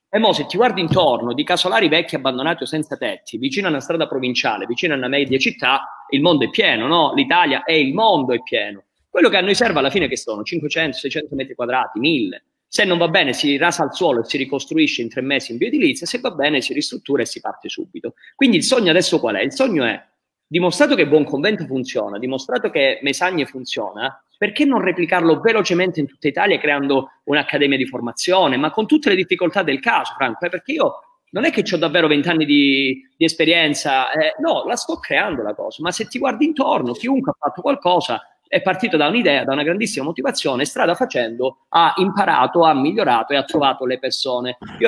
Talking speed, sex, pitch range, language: 210 wpm, male, 140-220 Hz, Italian